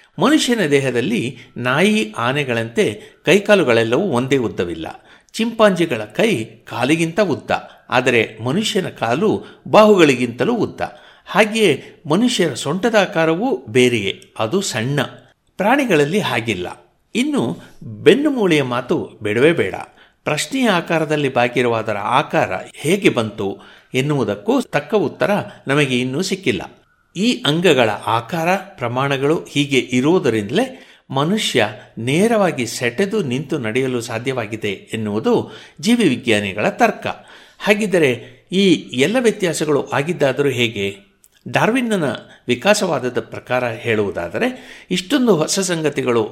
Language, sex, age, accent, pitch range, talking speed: Kannada, male, 60-79, native, 120-195 Hz, 90 wpm